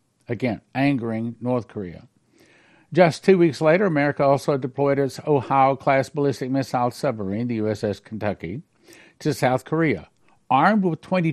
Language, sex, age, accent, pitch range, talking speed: English, male, 60-79, American, 115-155 Hz, 130 wpm